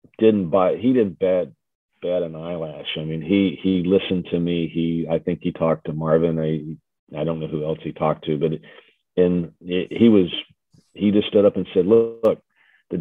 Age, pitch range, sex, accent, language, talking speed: 40-59, 80-95 Hz, male, American, English, 205 wpm